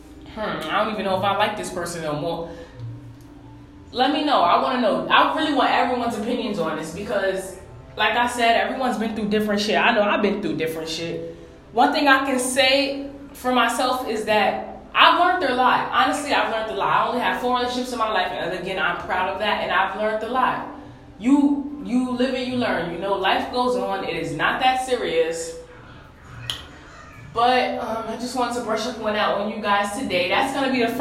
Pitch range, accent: 195-250 Hz, American